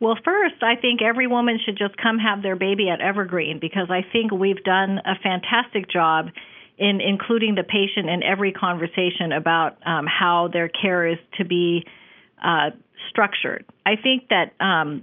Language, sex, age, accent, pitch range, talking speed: English, female, 40-59, American, 180-220 Hz, 170 wpm